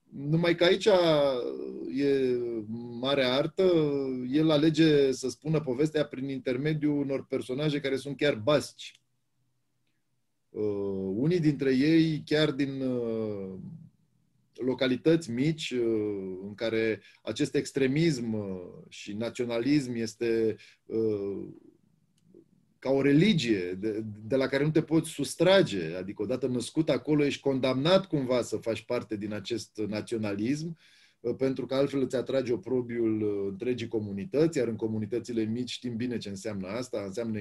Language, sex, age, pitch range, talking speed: Romanian, male, 30-49, 115-150 Hz, 130 wpm